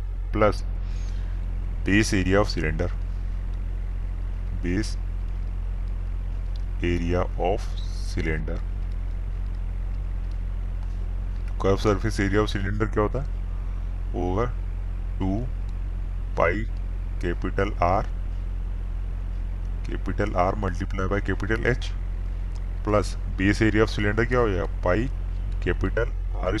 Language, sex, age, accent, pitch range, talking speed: Hindi, male, 30-49, native, 90-100 Hz, 45 wpm